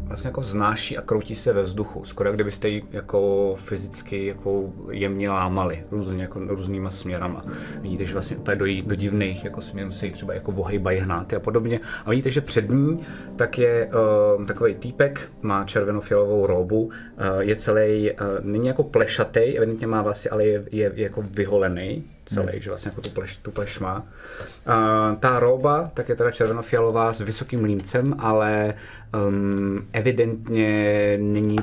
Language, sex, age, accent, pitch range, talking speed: Czech, male, 30-49, native, 100-110 Hz, 165 wpm